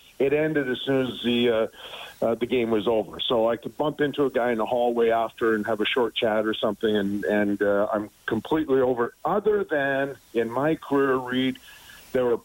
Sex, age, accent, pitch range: male, 50-69, American, 115-140 Hz